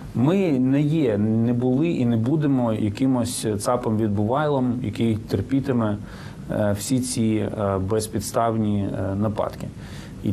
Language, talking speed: Ukrainian, 100 wpm